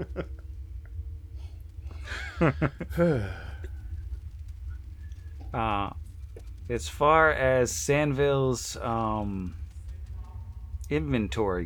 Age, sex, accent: 30-49, male, American